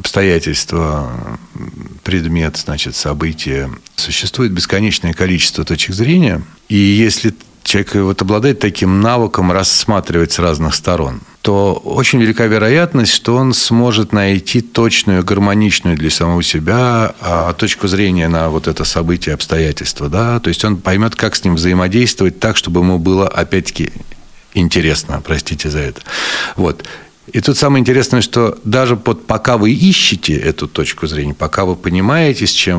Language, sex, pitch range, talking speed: Russian, male, 80-115 Hz, 135 wpm